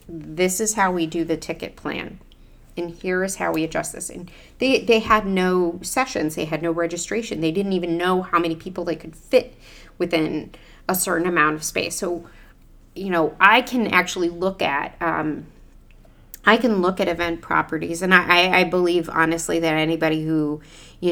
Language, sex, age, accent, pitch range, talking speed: English, female, 30-49, American, 165-185 Hz, 185 wpm